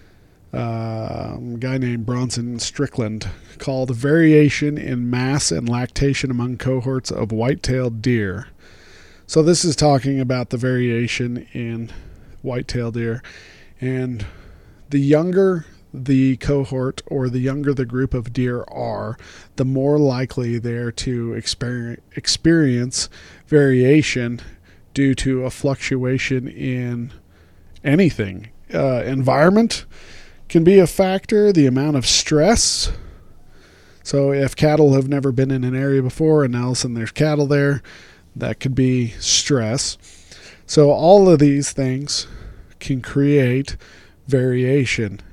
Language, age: English, 40-59